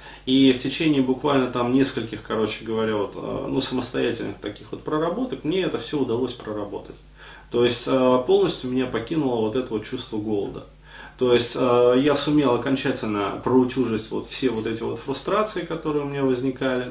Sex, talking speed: male, 160 wpm